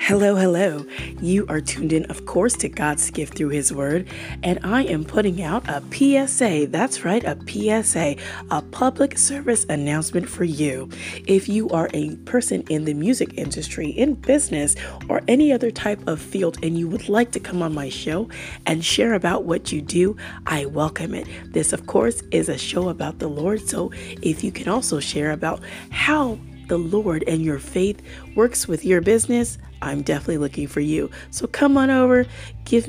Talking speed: 185 wpm